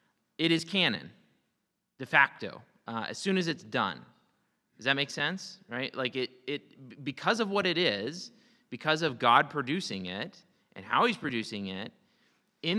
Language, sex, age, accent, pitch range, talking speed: English, male, 30-49, American, 115-160 Hz, 165 wpm